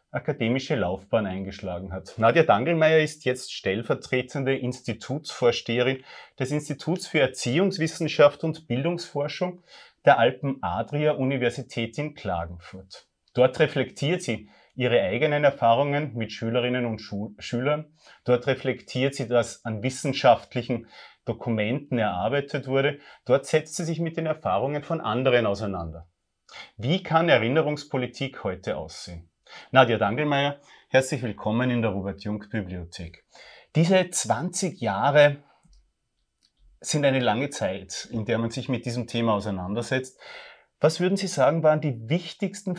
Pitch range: 115-150 Hz